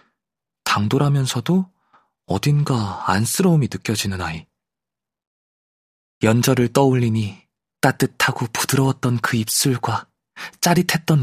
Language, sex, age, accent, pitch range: Korean, male, 20-39, native, 100-130 Hz